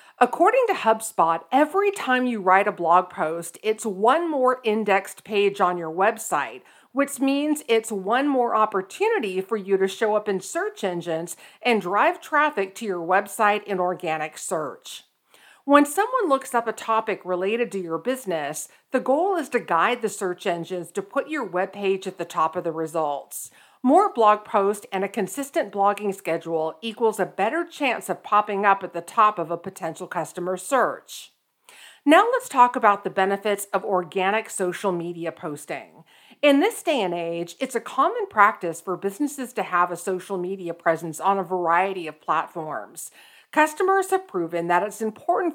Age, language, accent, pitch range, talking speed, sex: 50-69, English, American, 180-265 Hz, 175 wpm, female